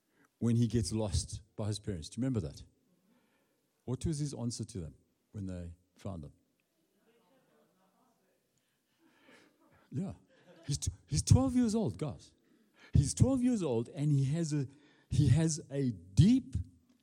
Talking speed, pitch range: 145 wpm, 110-150 Hz